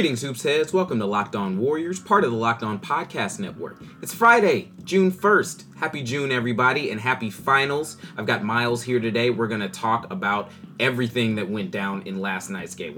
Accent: American